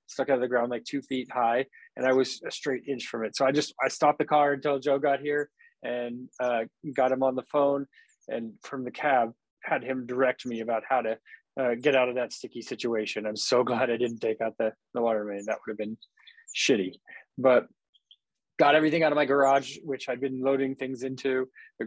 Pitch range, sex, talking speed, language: 120-140 Hz, male, 230 wpm, English